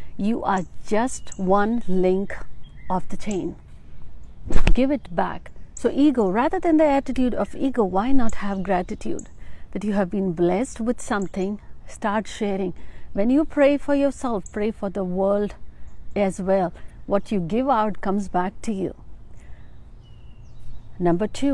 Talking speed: 145 wpm